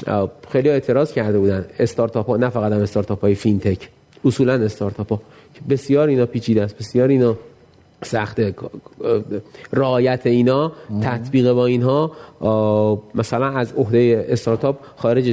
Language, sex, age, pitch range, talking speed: Persian, male, 30-49, 115-140 Hz, 130 wpm